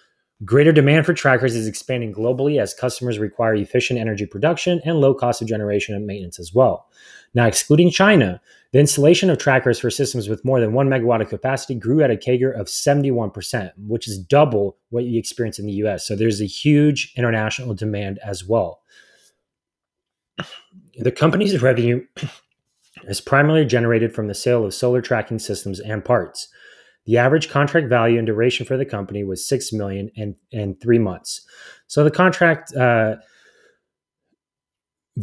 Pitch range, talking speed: 105-135 Hz, 165 wpm